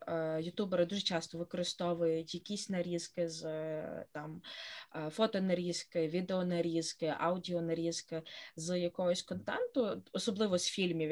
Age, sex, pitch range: 20-39, female, 165-190 Hz